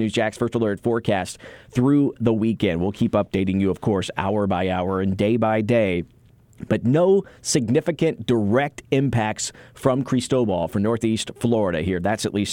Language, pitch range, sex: English, 105-135 Hz, male